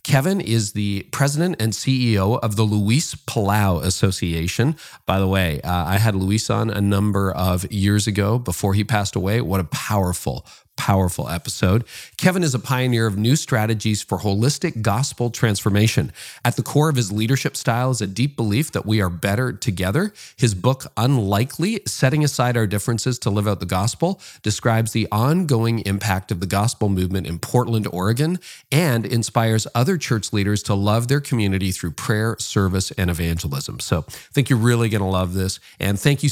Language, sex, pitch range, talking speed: English, male, 100-130 Hz, 180 wpm